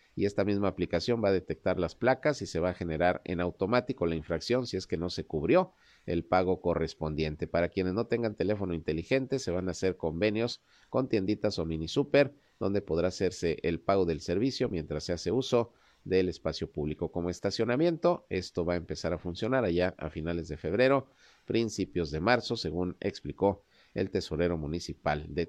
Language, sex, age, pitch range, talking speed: Spanish, male, 50-69, 85-110 Hz, 185 wpm